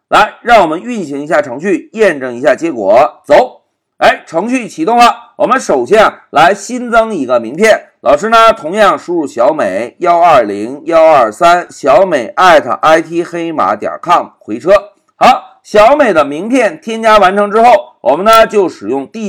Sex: male